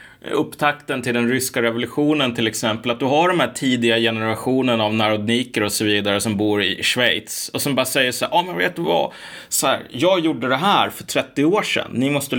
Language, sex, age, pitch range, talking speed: Swedish, male, 30-49, 115-155 Hz, 225 wpm